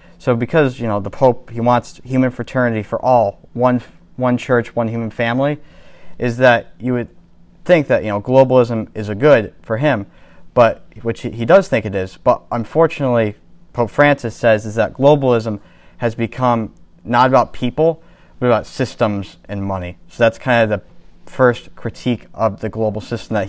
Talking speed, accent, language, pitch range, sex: 175 wpm, American, English, 110-130 Hz, male